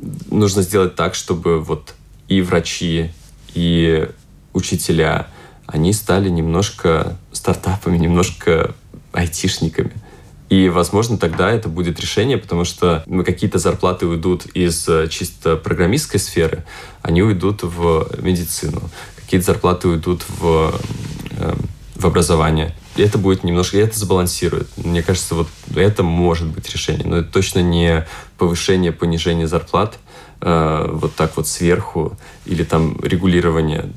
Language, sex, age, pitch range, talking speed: Russian, male, 20-39, 85-95 Hz, 120 wpm